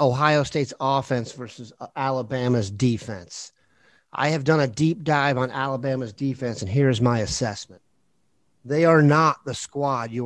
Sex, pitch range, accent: male, 120-145 Hz, American